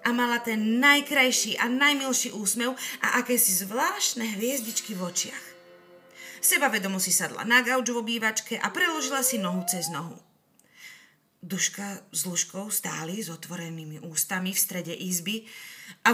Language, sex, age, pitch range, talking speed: Slovak, female, 30-49, 190-255 Hz, 135 wpm